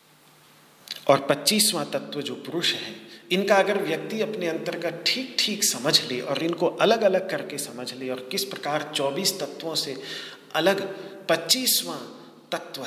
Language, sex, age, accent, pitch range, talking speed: Hindi, male, 40-59, native, 135-195 Hz, 140 wpm